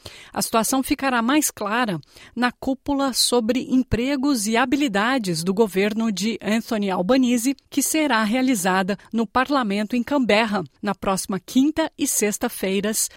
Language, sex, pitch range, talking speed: Portuguese, female, 205-260 Hz, 130 wpm